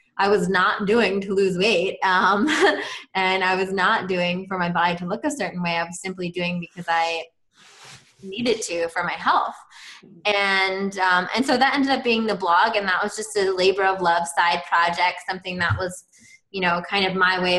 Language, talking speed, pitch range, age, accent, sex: English, 210 wpm, 175-200 Hz, 20-39, American, female